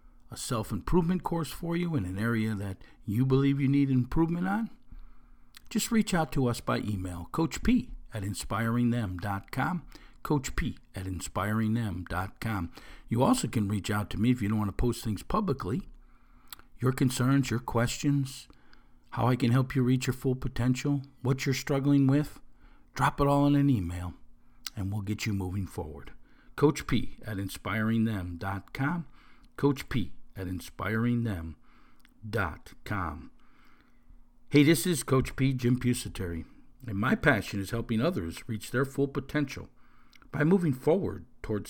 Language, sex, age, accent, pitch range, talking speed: English, male, 50-69, American, 100-135 Hz, 140 wpm